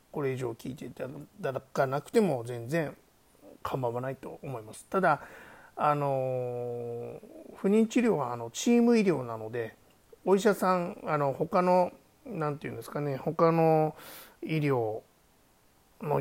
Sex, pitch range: male, 130-180 Hz